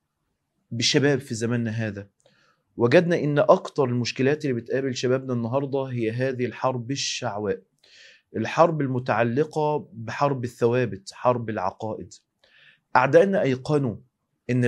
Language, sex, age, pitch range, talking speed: Arabic, male, 30-49, 120-145 Hz, 100 wpm